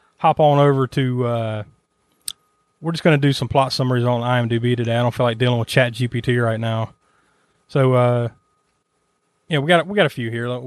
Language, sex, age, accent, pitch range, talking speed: English, male, 30-49, American, 130-160 Hz, 200 wpm